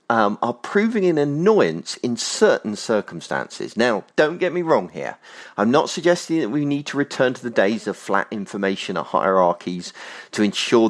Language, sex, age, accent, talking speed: English, male, 40-59, British, 175 wpm